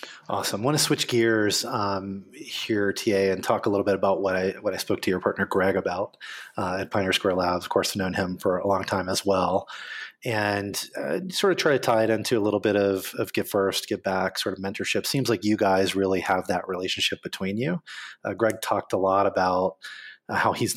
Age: 30-49